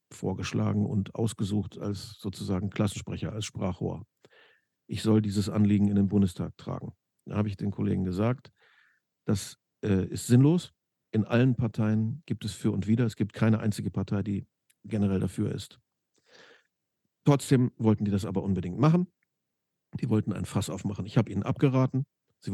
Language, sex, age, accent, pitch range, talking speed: German, male, 50-69, German, 100-120 Hz, 160 wpm